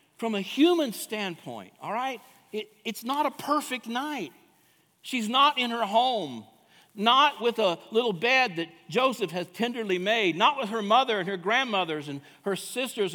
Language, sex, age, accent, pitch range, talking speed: English, male, 60-79, American, 195-255 Hz, 170 wpm